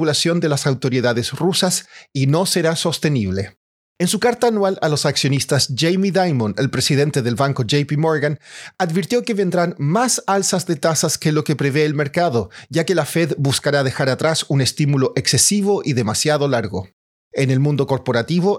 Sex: male